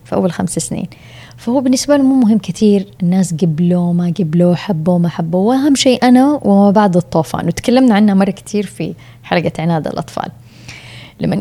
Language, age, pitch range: Arabic, 20-39, 170-210 Hz